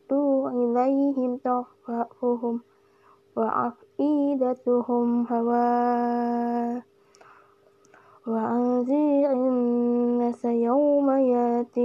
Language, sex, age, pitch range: Indonesian, female, 10-29, 240-280 Hz